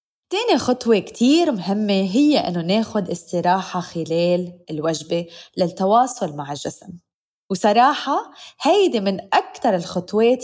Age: 20-39